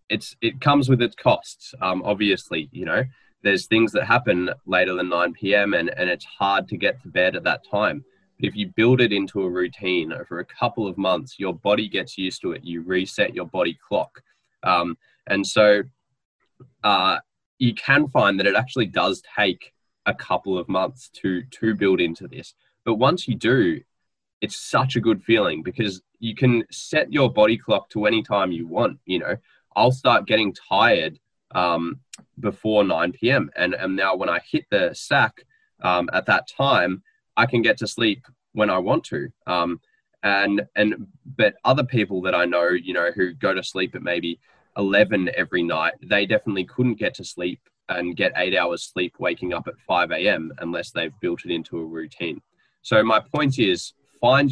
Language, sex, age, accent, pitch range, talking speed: English, male, 20-39, Australian, 95-125 Hz, 190 wpm